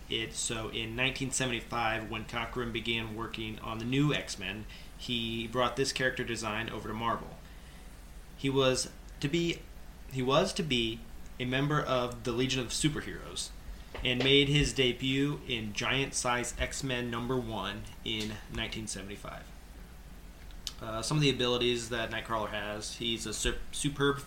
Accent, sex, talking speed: American, male, 145 wpm